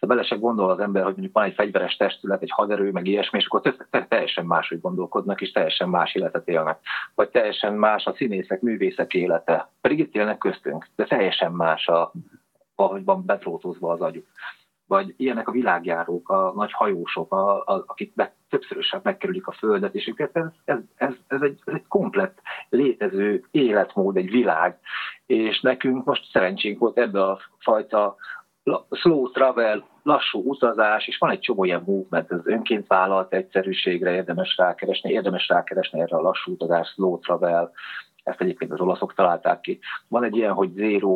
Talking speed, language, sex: 165 wpm, Hungarian, male